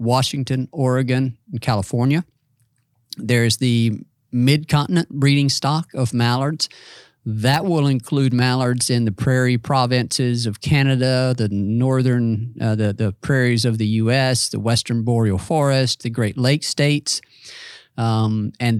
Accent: American